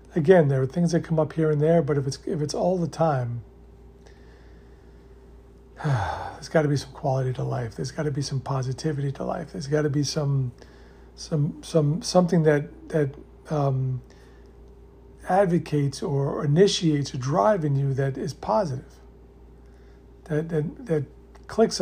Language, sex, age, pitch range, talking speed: English, male, 50-69, 100-155 Hz, 160 wpm